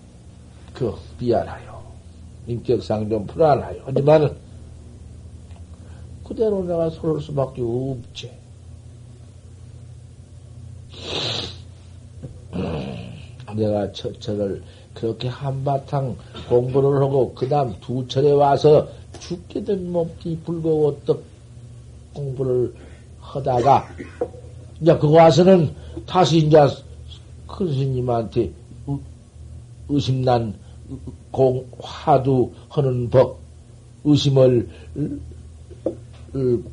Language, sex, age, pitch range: Korean, male, 60-79, 105-135 Hz